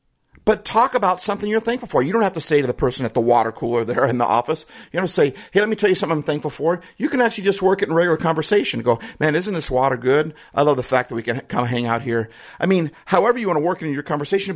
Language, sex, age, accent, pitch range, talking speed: English, male, 50-69, American, 120-190 Hz, 315 wpm